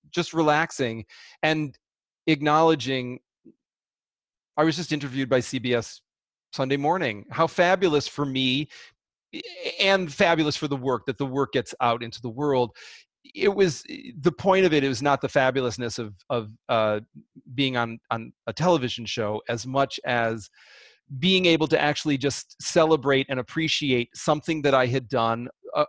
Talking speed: 155 wpm